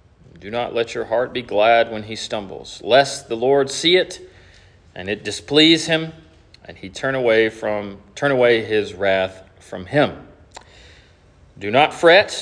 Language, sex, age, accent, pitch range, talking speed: English, male, 40-59, American, 100-135 Hz, 160 wpm